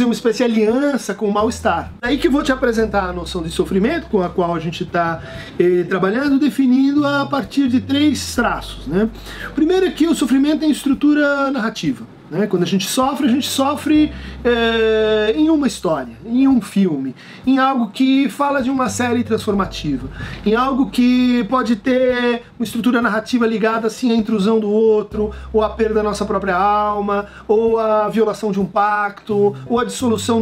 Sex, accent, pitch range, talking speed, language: male, Brazilian, 200-265 Hz, 180 wpm, Portuguese